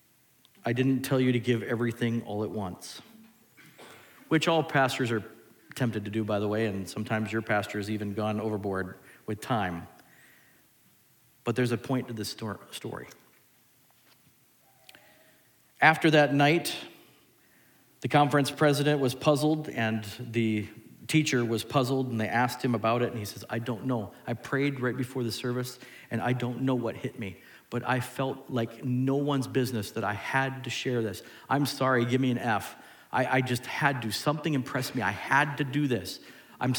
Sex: male